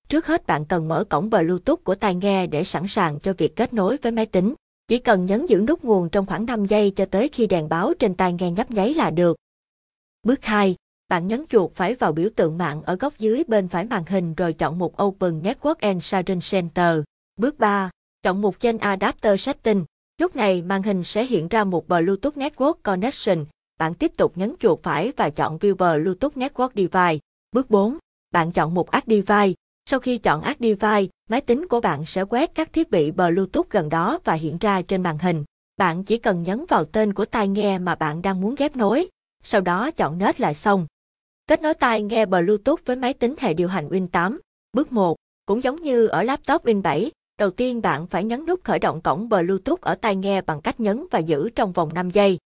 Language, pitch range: Vietnamese, 180-235 Hz